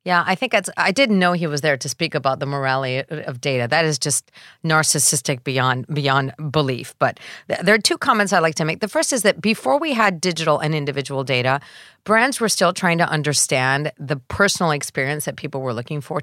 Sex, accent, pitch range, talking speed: female, American, 145-195 Hz, 215 wpm